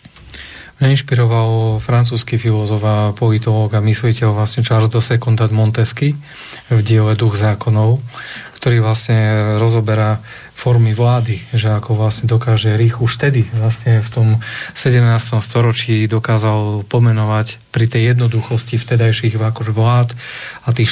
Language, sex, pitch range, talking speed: Slovak, male, 110-120 Hz, 120 wpm